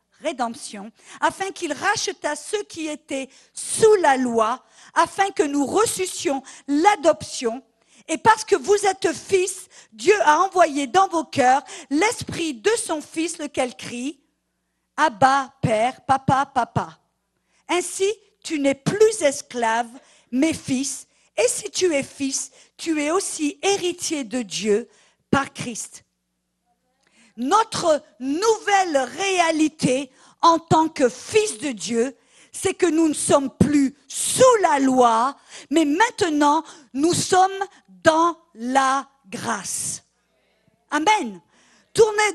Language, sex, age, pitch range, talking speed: English, female, 50-69, 265-375 Hz, 125 wpm